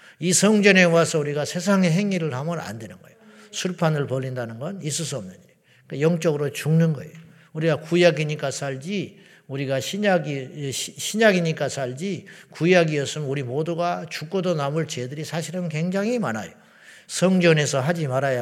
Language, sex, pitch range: Korean, male, 140-180 Hz